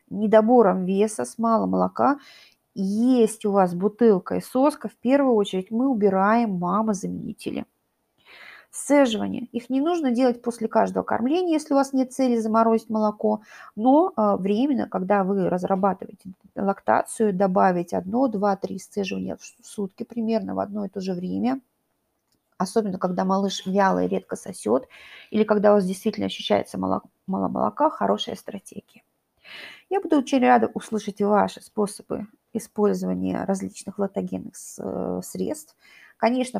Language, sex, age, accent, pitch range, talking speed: Russian, female, 30-49, native, 190-240 Hz, 140 wpm